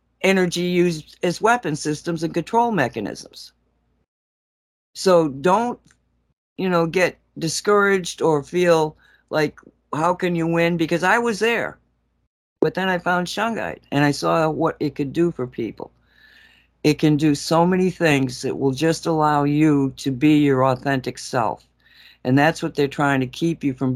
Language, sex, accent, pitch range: English, female, American, 135-170 Hz